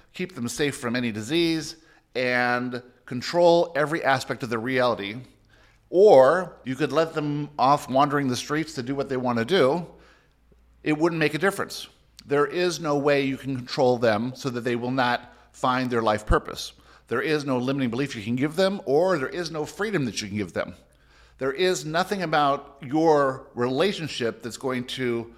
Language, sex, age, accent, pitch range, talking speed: English, male, 50-69, American, 120-150 Hz, 185 wpm